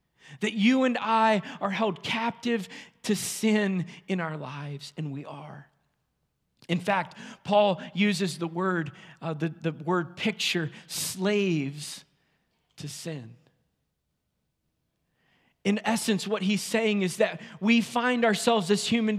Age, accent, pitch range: 40-59, American, 170-235 Hz